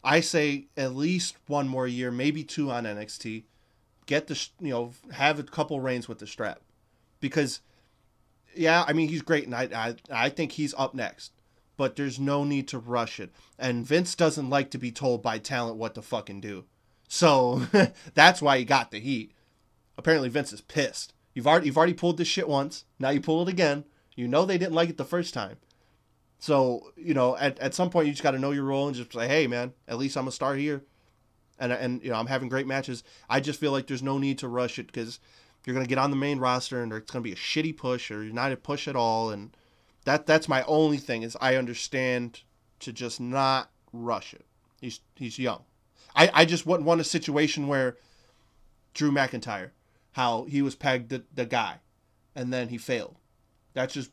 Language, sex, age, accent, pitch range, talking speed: English, male, 20-39, American, 115-145 Hz, 215 wpm